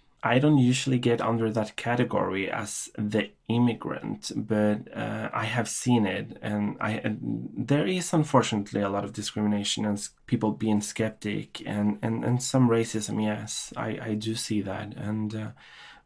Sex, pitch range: male, 105-115 Hz